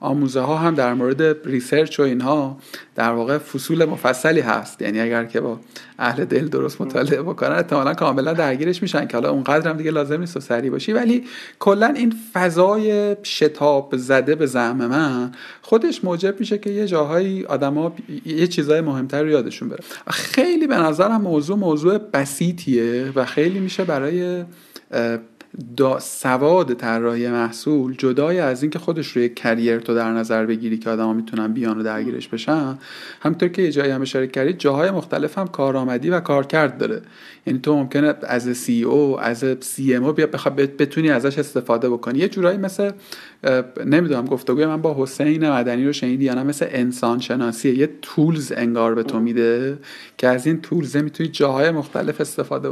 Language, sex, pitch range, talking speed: Persian, male, 125-175 Hz, 170 wpm